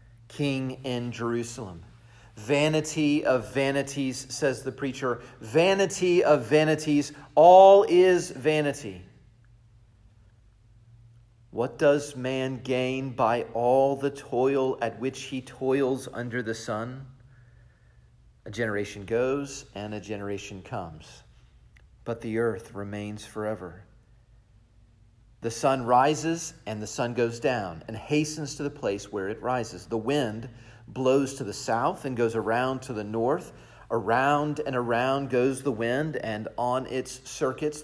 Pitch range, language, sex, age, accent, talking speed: 110-135 Hz, English, male, 40-59, American, 125 wpm